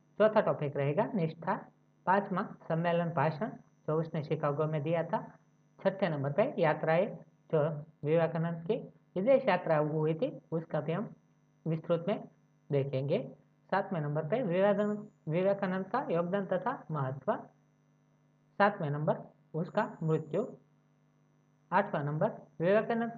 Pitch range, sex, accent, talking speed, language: 155-210 Hz, female, native, 120 wpm, Hindi